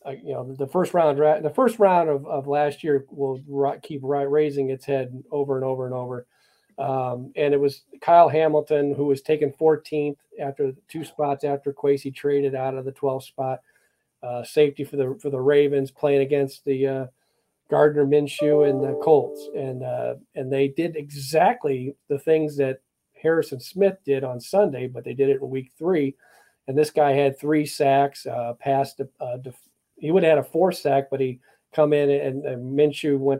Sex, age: male, 40-59